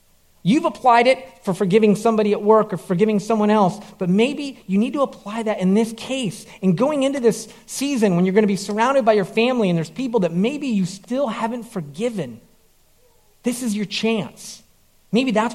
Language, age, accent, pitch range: English, 40-59, American, 175-225 Hz